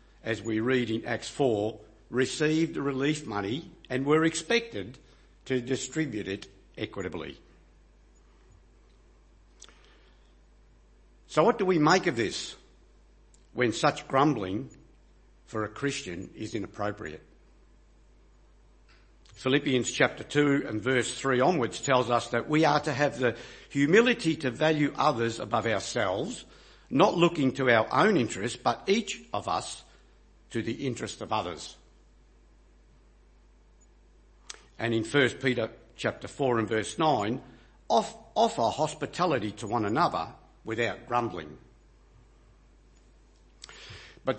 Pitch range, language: 110-150 Hz, English